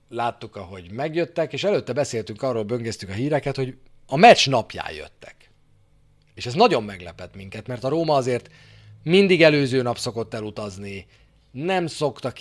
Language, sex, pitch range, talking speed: Hungarian, male, 100-135 Hz, 150 wpm